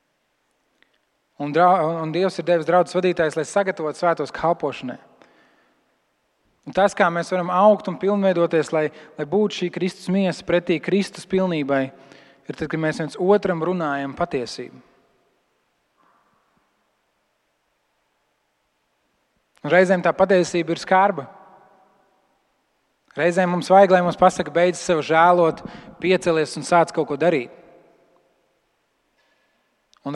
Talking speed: 110 wpm